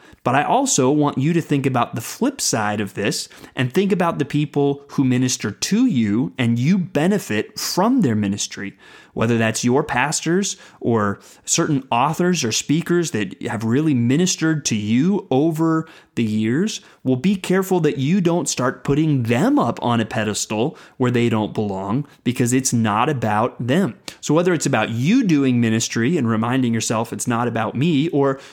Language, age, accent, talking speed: English, 30-49, American, 175 wpm